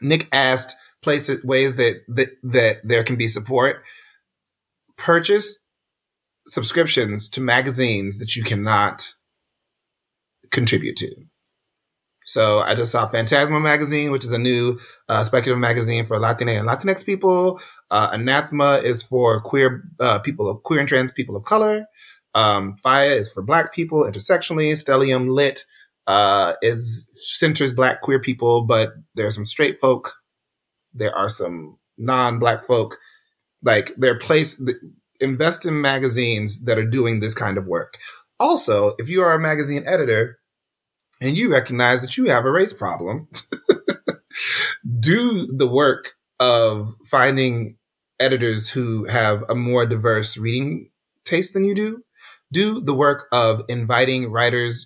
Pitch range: 115-150 Hz